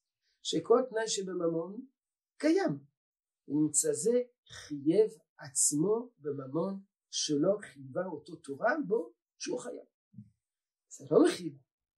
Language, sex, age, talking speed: Hebrew, male, 50-69, 95 wpm